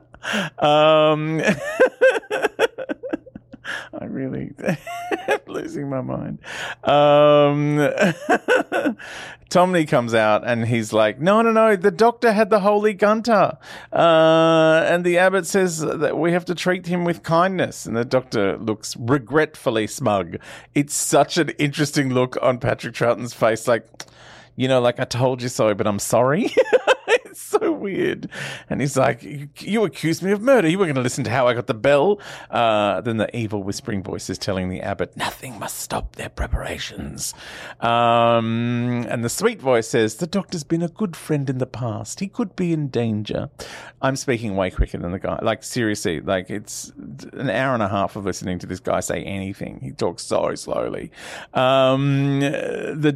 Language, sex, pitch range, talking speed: English, male, 115-180 Hz, 165 wpm